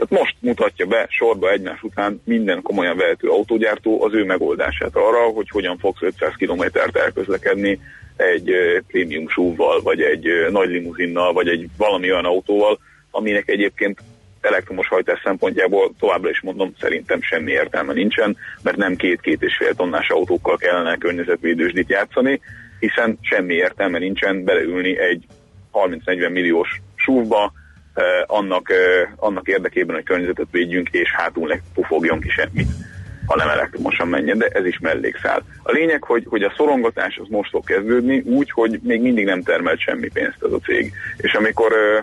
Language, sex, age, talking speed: Hungarian, male, 30-49, 150 wpm